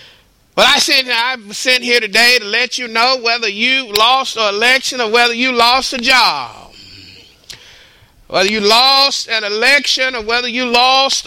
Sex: male